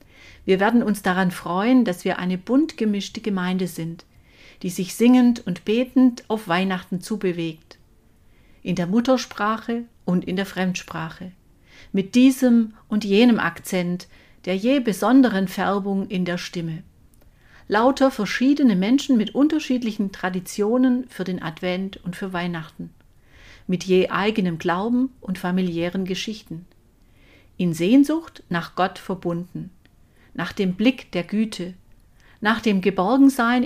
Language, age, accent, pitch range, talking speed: German, 50-69, German, 180-235 Hz, 125 wpm